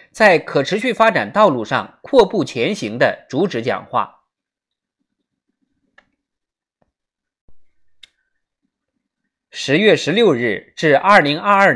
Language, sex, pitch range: Chinese, male, 170-245 Hz